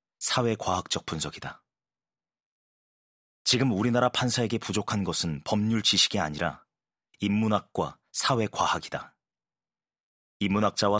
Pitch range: 90-115 Hz